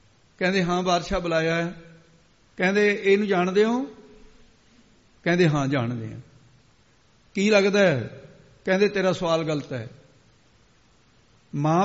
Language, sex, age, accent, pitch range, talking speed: English, male, 60-79, Indian, 160-200 Hz, 145 wpm